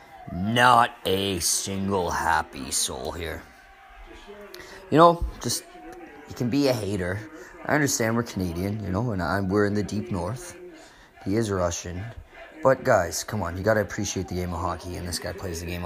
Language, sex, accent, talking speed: English, male, American, 180 wpm